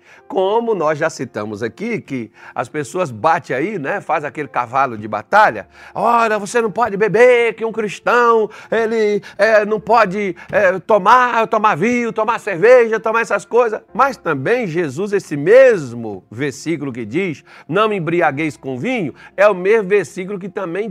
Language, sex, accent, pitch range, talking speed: Portuguese, male, Brazilian, 155-215 Hz, 160 wpm